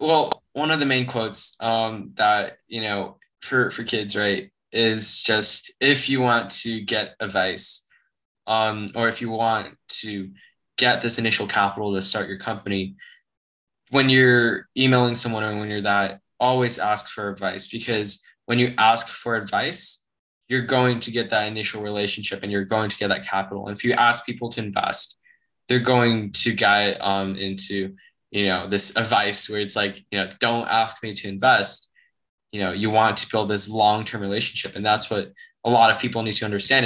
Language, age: English, 10-29